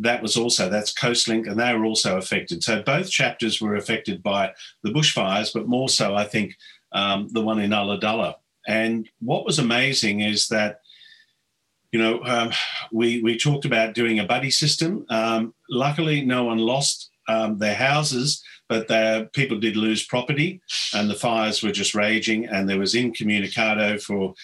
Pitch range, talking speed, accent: 110-125 Hz, 165 wpm, Australian